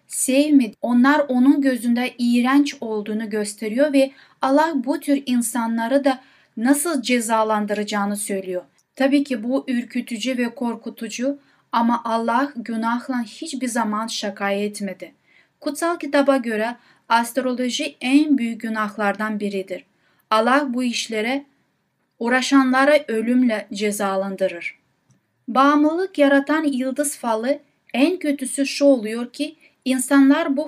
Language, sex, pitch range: Turkish, female, 225-275 Hz